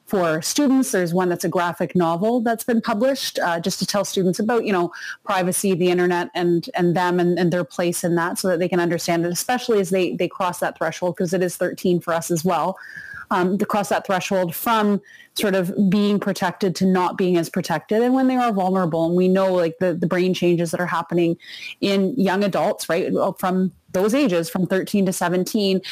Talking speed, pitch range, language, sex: 220 wpm, 175-195 Hz, English, female